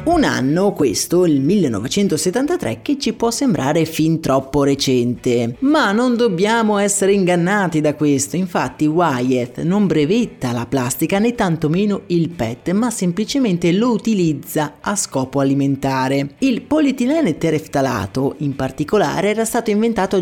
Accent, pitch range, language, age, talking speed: native, 145-215 Hz, Italian, 30-49, 130 wpm